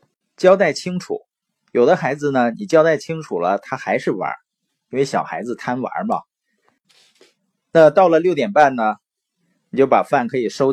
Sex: male